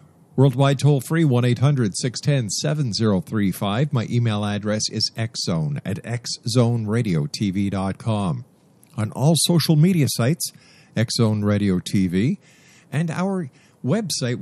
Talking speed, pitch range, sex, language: 105 wpm, 115-150 Hz, male, English